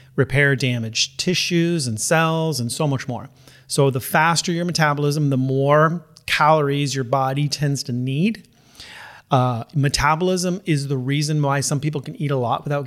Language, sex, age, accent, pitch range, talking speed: English, male, 30-49, American, 130-155 Hz, 165 wpm